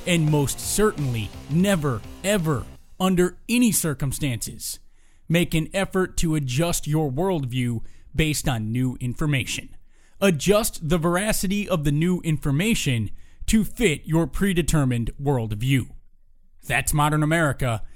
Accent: American